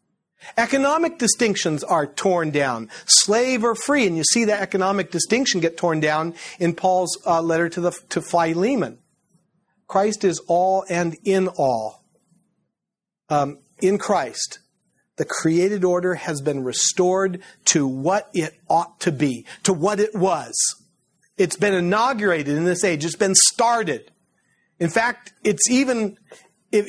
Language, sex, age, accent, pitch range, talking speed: English, male, 40-59, American, 155-205 Hz, 145 wpm